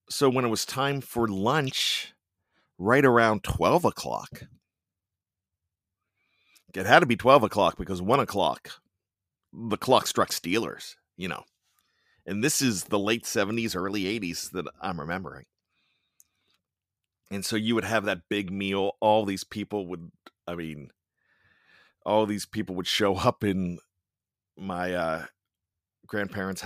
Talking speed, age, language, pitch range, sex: 135 wpm, 40-59, English, 95-115 Hz, male